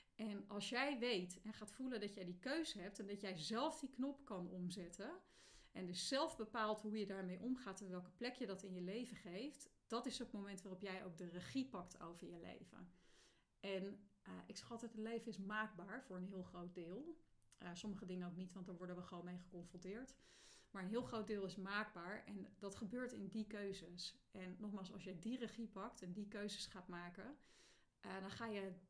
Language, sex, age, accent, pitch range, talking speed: Dutch, female, 30-49, Dutch, 185-220 Hz, 220 wpm